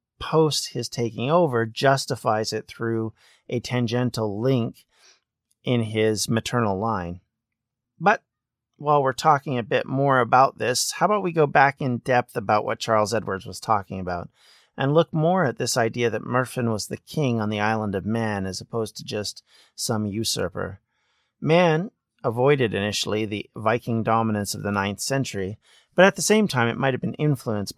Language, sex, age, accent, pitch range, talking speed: English, male, 40-59, American, 105-130 Hz, 170 wpm